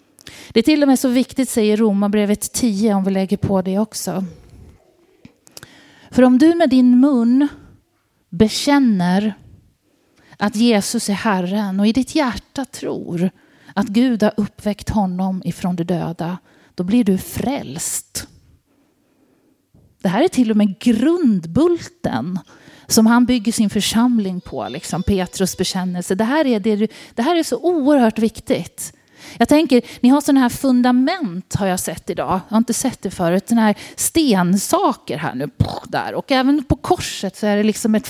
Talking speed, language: 160 wpm, Swedish